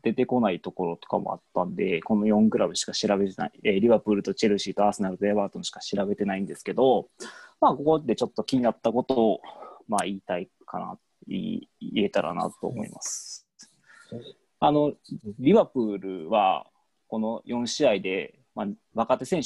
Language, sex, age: Japanese, male, 20-39